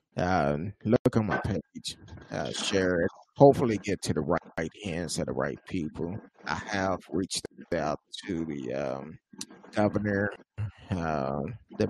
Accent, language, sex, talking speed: American, English, male, 145 wpm